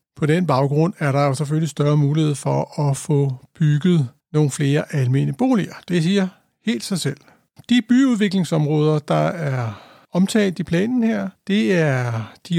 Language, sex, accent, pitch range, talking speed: Danish, male, native, 150-195 Hz, 155 wpm